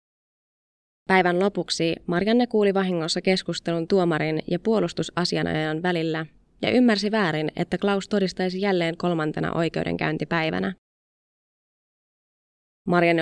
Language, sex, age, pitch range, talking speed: Finnish, female, 20-39, 160-190 Hz, 90 wpm